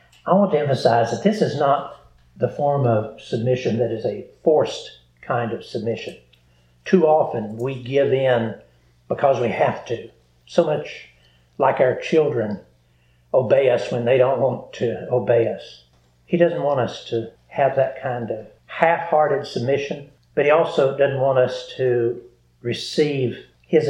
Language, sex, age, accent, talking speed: English, male, 60-79, American, 155 wpm